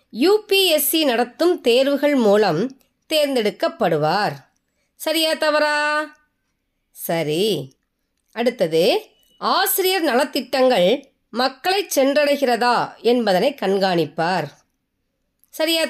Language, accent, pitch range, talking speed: Tamil, native, 190-295 Hz, 60 wpm